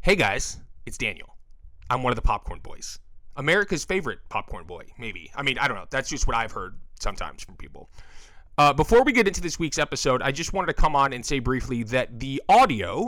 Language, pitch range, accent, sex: English, 120-170 Hz, American, male